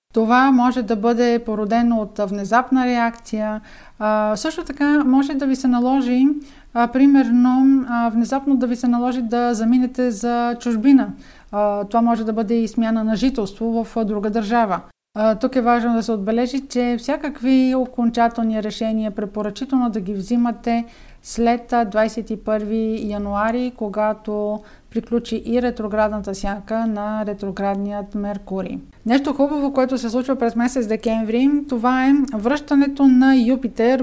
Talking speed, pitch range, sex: 130 wpm, 220-255 Hz, female